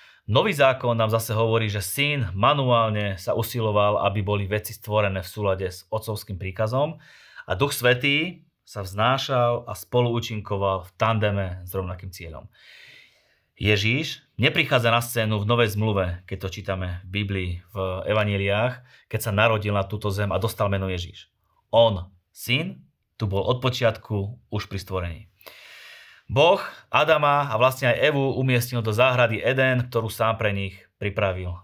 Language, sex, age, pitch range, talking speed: Slovak, male, 30-49, 100-125 Hz, 150 wpm